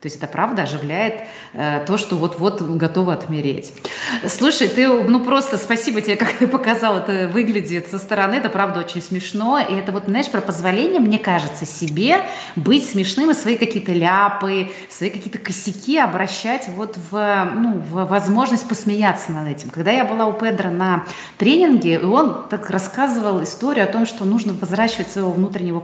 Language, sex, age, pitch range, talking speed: Russian, female, 30-49, 180-235 Hz, 170 wpm